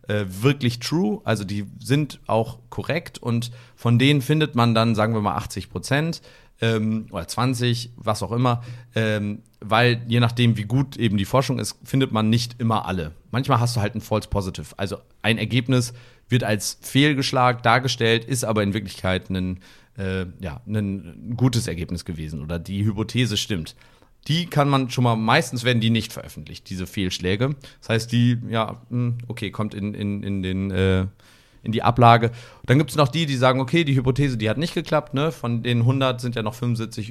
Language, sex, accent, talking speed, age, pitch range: German, male, German, 185 wpm, 40-59, 105-130 Hz